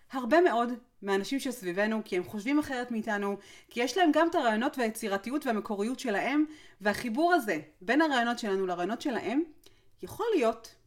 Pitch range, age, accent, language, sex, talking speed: 205-290 Hz, 30-49, native, Hebrew, female, 150 wpm